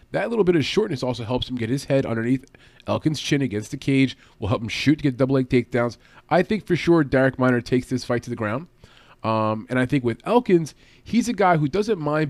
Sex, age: male, 30-49